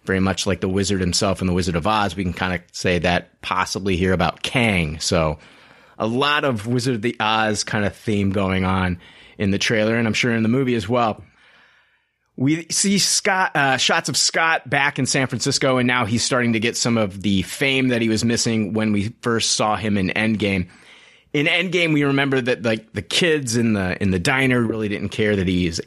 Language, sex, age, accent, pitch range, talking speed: English, male, 30-49, American, 95-120 Hz, 220 wpm